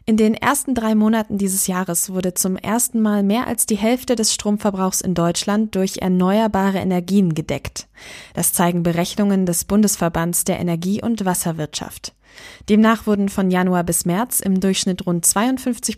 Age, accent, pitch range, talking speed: 20-39, German, 180-220 Hz, 160 wpm